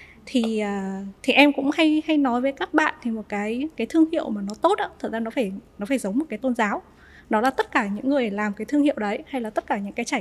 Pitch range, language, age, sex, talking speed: 215-275 Hz, Vietnamese, 10-29, female, 290 wpm